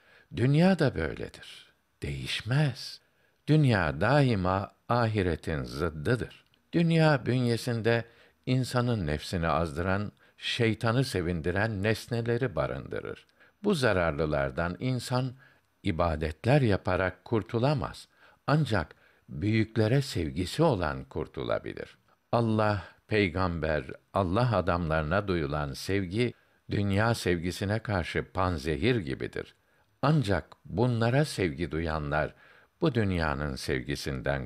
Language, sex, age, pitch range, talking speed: Turkish, male, 60-79, 80-120 Hz, 80 wpm